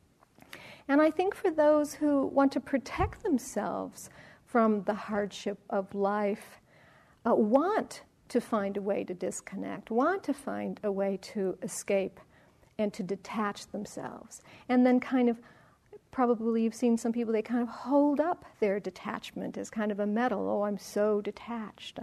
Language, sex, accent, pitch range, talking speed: English, female, American, 210-255 Hz, 160 wpm